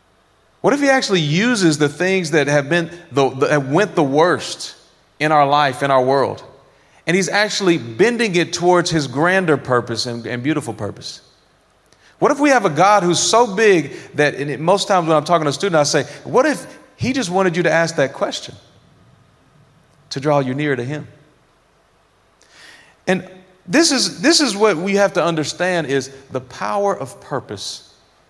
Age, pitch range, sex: 30-49, 135-185 Hz, male